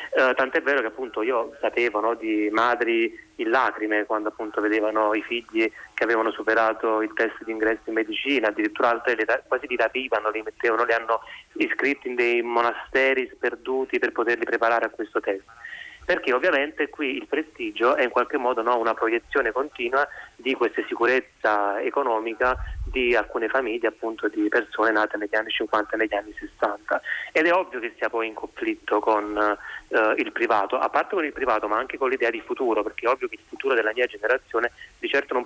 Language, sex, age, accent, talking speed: Italian, male, 30-49, native, 185 wpm